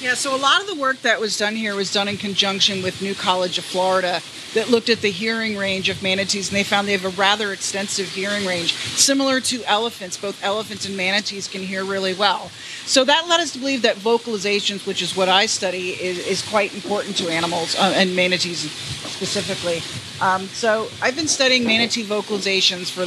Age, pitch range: 30-49, 185-230 Hz